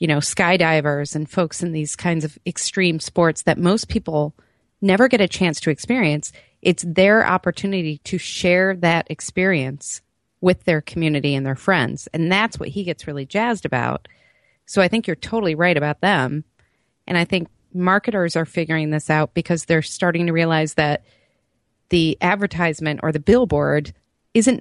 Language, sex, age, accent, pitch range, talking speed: English, female, 30-49, American, 150-190 Hz, 170 wpm